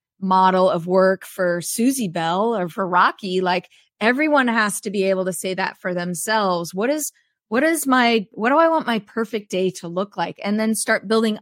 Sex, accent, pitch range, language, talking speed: female, American, 185-225 Hz, English, 205 wpm